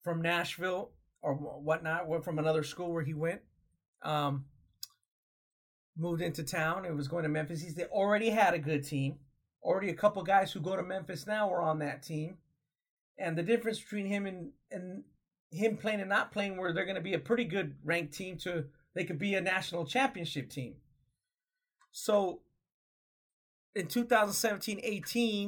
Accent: American